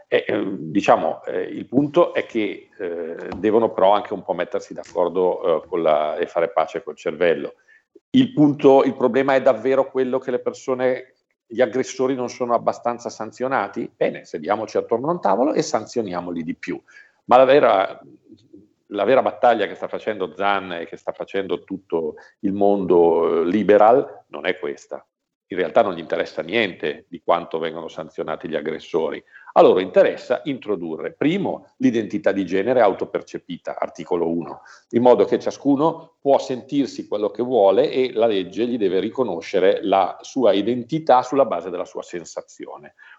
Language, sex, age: Italian, male, 50-69